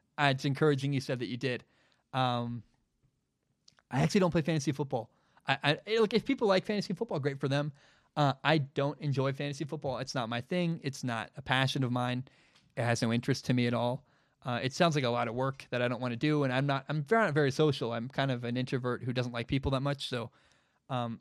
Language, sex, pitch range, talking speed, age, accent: English, male, 125-145 Hz, 240 wpm, 20-39, American